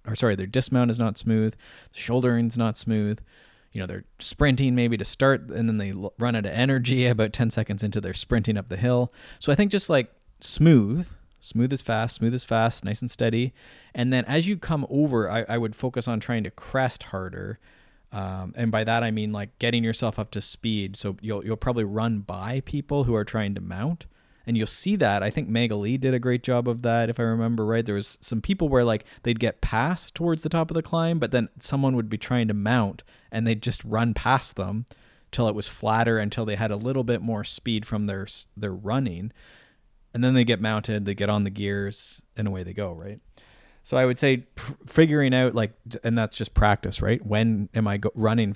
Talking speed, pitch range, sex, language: 225 wpm, 105-125 Hz, male, English